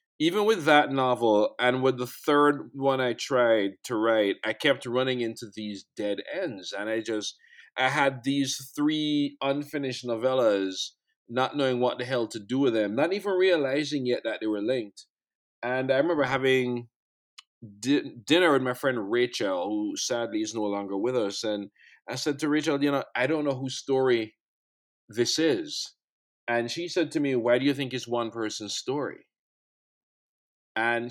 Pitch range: 115-145 Hz